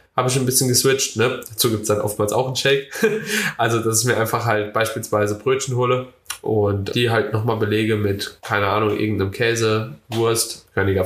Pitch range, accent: 115-140 Hz, German